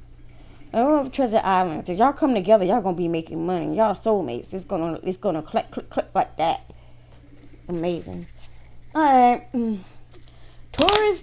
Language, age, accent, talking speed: English, 20-39, American, 165 wpm